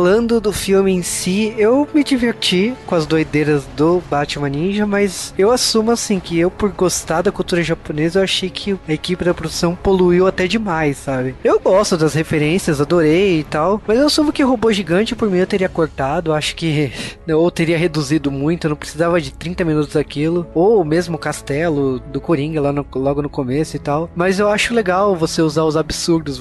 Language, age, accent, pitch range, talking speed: Portuguese, 20-39, Brazilian, 155-200 Hz, 205 wpm